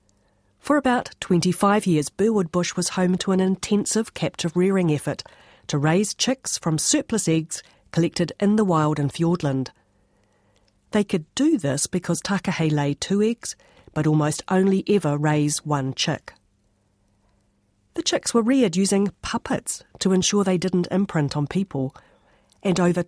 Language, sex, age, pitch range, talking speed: English, female, 40-59, 145-190 Hz, 145 wpm